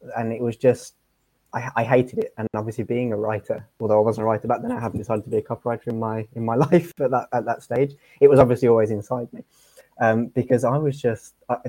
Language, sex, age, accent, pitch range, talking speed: English, male, 20-39, British, 110-135 Hz, 245 wpm